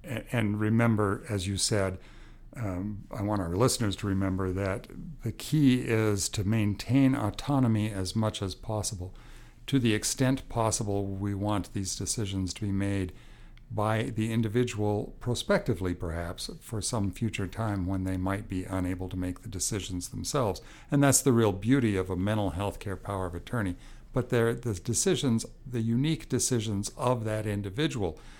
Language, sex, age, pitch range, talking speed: English, male, 60-79, 100-125 Hz, 160 wpm